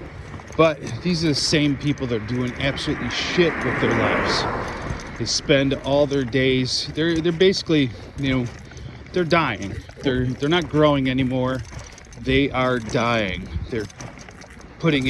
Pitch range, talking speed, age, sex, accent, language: 110-145 Hz, 145 wpm, 40-59, male, American, English